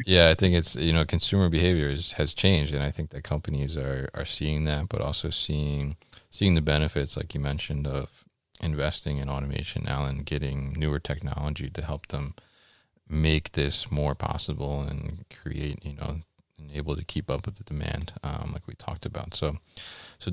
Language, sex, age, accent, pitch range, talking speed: English, male, 20-39, American, 75-85 Hz, 185 wpm